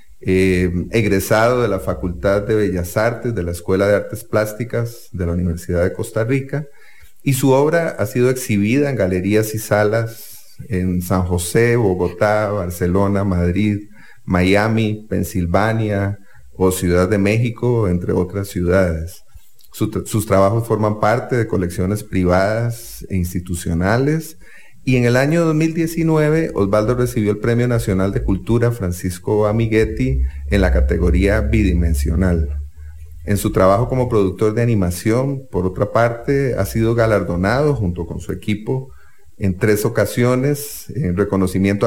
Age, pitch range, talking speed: 40-59, 90-115 Hz, 135 wpm